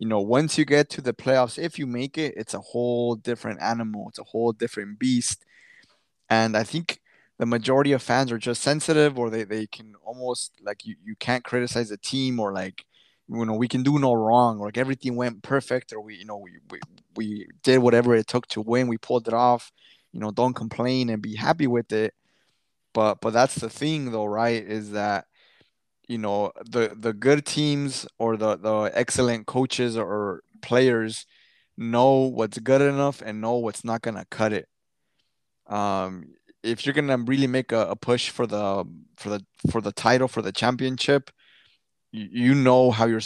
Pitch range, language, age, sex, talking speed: 110-130 Hz, English, 20-39, male, 195 wpm